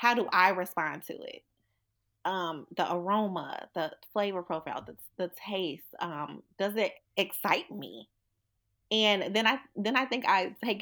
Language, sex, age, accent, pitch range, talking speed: English, female, 20-39, American, 170-215 Hz, 150 wpm